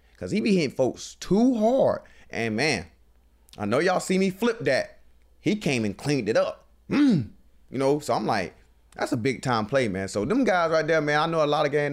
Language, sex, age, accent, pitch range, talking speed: English, male, 20-39, American, 105-150 Hz, 230 wpm